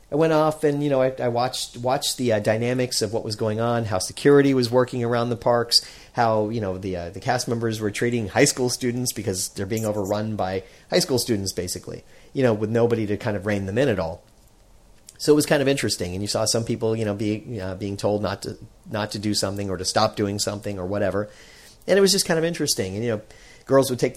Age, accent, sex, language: 40-59, American, male, English